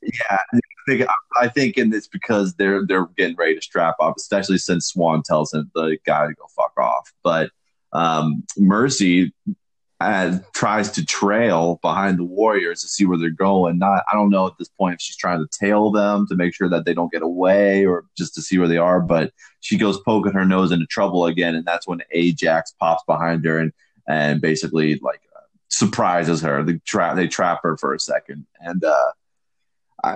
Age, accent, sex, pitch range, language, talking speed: 30-49, American, male, 85-110 Hz, English, 205 wpm